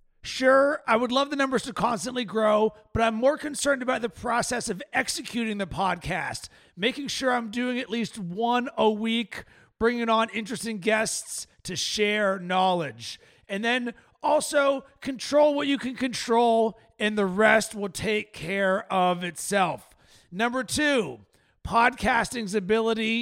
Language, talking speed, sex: English, 145 wpm, male